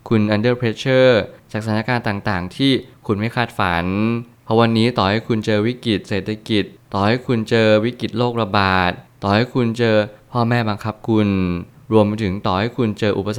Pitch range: 100-115 Hz